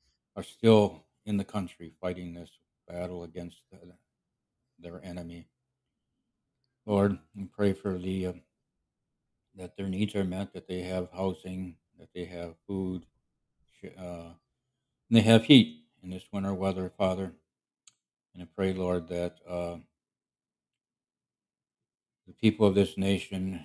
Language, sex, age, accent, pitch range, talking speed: English, male, 60-79, American, 85-100 Hz, 125 wpm